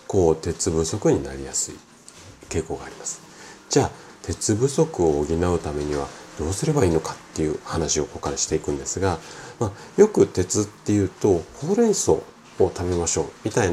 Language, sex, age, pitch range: Japanese, male, 40-59, 80-115 Hz